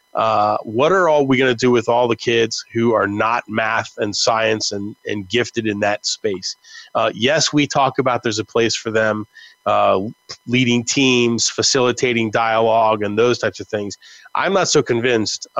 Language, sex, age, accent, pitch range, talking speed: English, male, 30-49, American, 110-125 Hz, 185 wpm